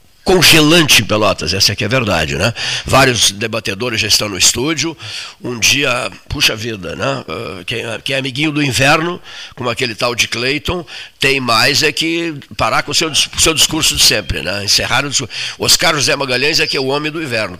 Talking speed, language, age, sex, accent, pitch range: 200 wpm, Portuguese, 60-79, male, Brazilian, 105-140 Hz